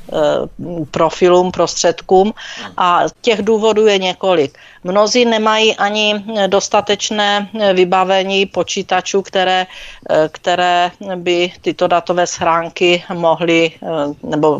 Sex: female